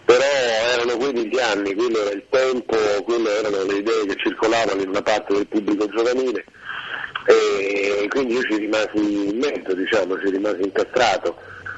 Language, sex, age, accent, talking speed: Italian, male, 50-69, native, 165 wpm